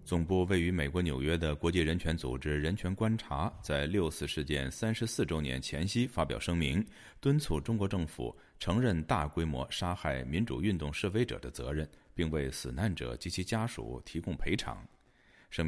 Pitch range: 70-95 Hz